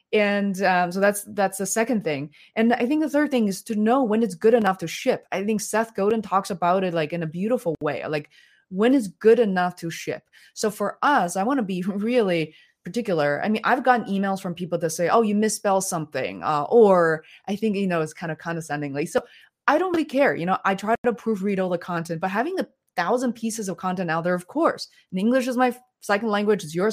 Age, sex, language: 20-39, female, English